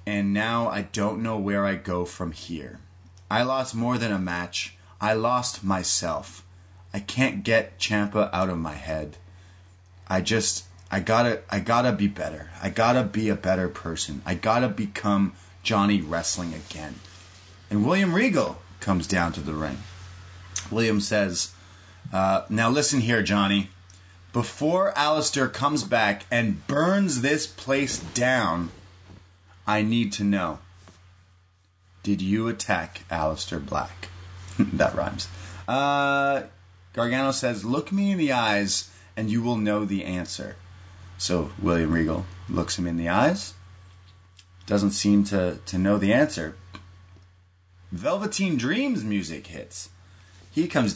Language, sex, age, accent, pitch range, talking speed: English, male, 30-49, American, 90-115 Hz, 140 wpm